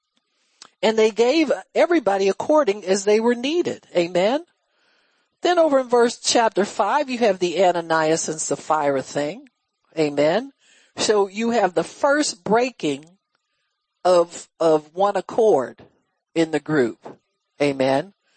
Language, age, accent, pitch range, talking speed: English, 60-79, American, 165-255 Hz, 125 wpm